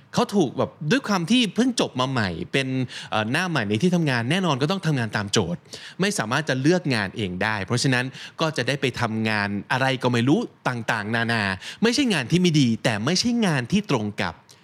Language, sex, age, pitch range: Thai, male, 20-39, 110-155 Hz